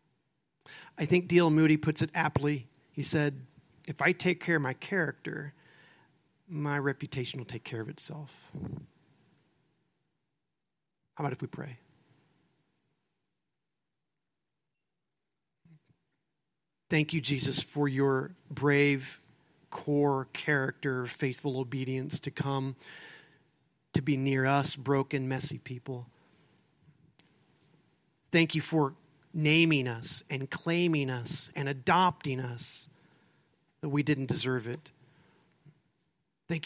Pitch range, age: 140-160 Hz, 40-59